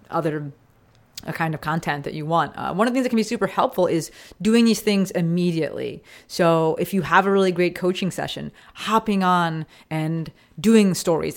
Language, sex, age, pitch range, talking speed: English, female, 30-49, 155-205 Hz, 195 wpm